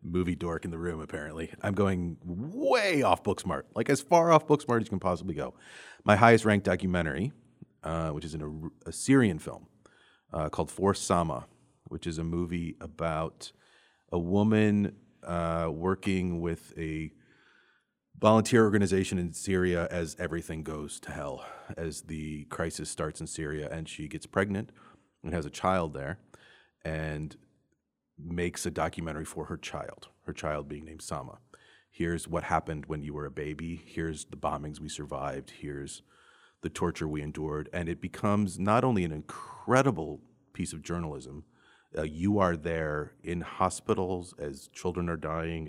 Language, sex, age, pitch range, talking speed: English, male, 30-49, 80-95 Hz, 160 wpm